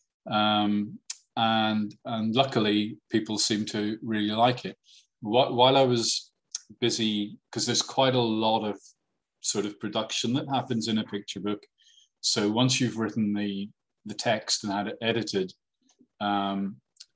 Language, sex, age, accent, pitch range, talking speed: English, male, 30-49, British, 105-115 Hz, 145 wpm